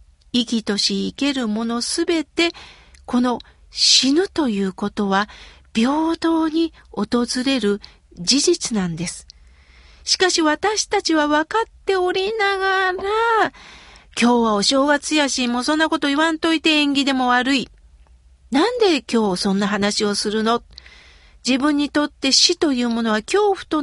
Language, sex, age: Japanese, female, 50-69